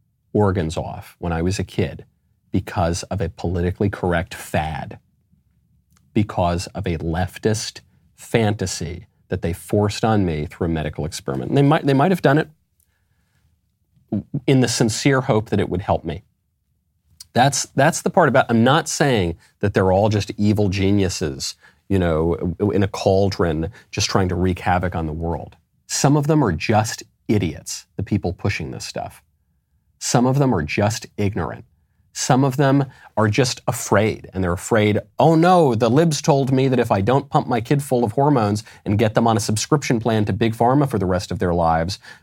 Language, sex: English, male